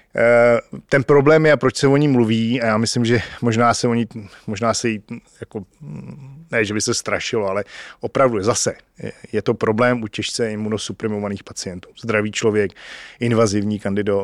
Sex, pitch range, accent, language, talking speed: male, 105-120 Hz, native, Czech, 160 wpm